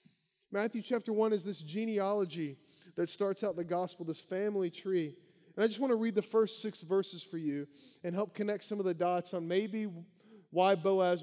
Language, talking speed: English, 200 wpm